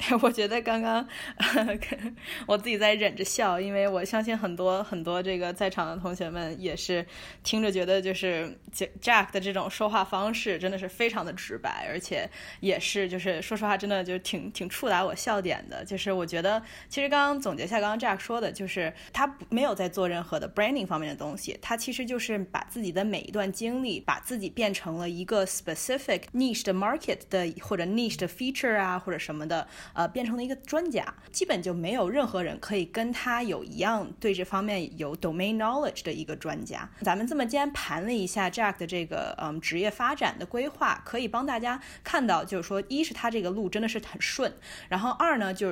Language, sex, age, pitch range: Chinese, female, 10-29, 185-235 Hz